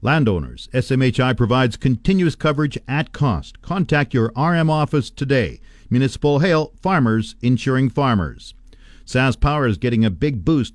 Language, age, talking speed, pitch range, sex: English, 50-69, 135 wpm, 110-145 Hz, male